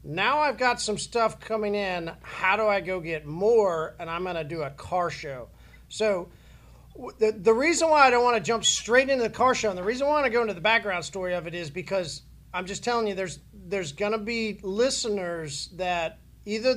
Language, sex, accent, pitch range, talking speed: English, male, American, 180-235 Hz, 230 wpm